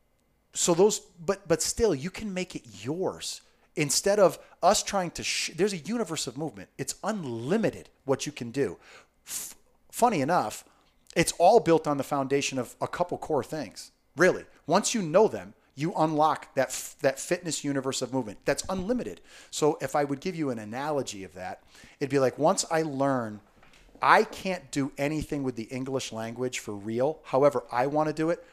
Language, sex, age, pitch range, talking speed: English, male, 30-49, 120-155 Hz, 180 wpm